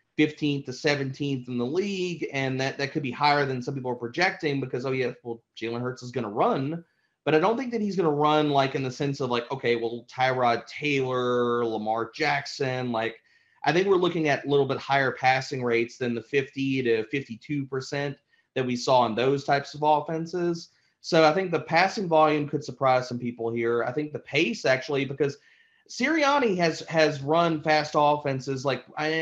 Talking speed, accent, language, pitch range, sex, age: 205 wpm, American, English, 130-160 Hz, male, 30-49